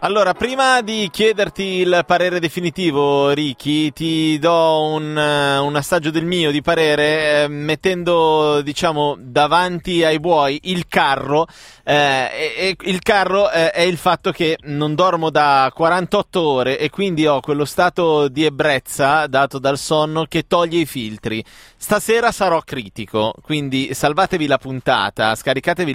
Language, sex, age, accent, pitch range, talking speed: Italian, male, 30-49, native, 135-180 Hz, 145 wpm